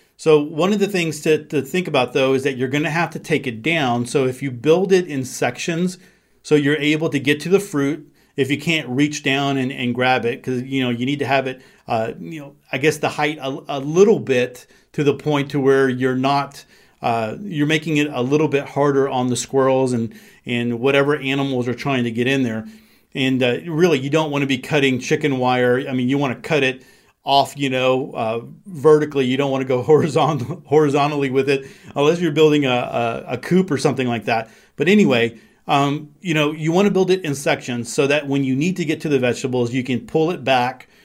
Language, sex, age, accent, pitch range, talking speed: English, male, 40-59, American, 130-150 Hz, 235 wpm